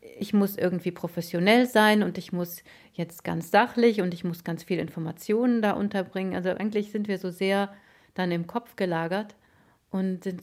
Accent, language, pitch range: German, German, 185-225 Hz